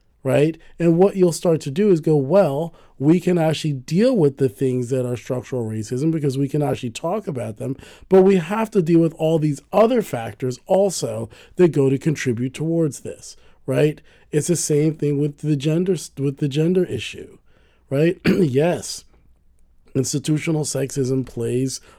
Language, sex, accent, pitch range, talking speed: English, male, American, 130-165 Hz, 170 wpm